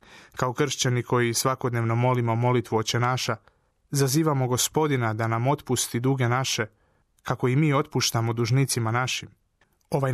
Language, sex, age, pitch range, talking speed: Croatian, male, 30-49, 115-130 Hz, 130 wpm